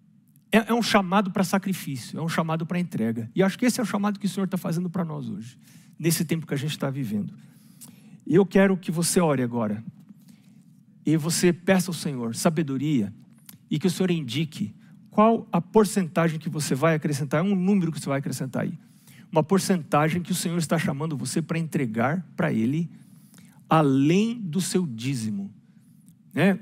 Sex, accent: male, Brazilian